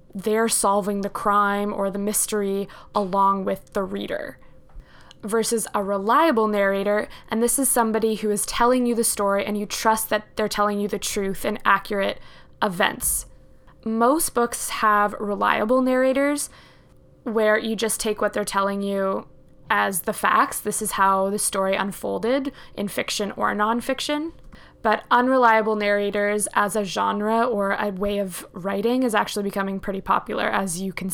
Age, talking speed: 20-39, 160 wpm